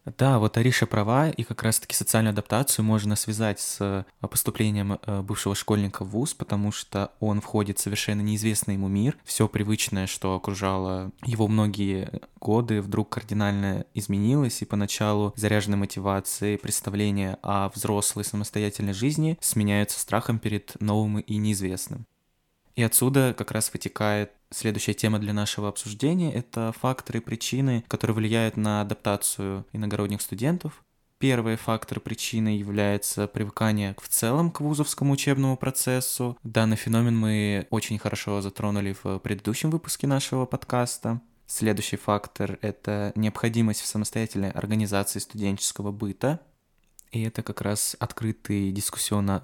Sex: male